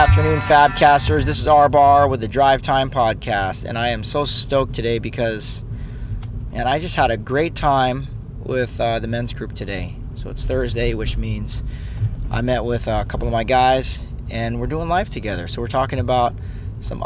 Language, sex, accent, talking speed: English, male, American, 195 wpm